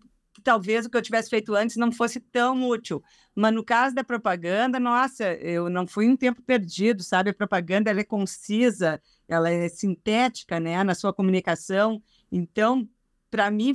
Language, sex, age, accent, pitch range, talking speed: Portuguese, female, 50-69, Brazilian, 195-255 Hz, 170 wpm